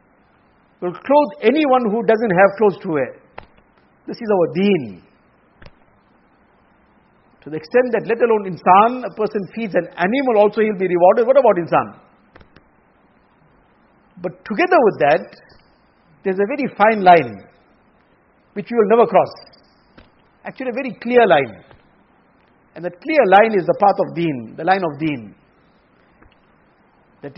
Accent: Indian